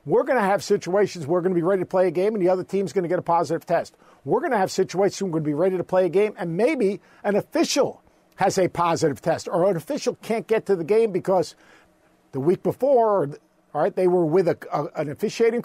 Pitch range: 160-210 Hz